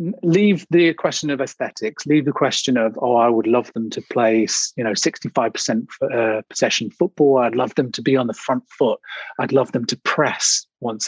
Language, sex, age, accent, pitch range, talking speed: English, male, 30-49, British, 125-185 Hz, 200 wpm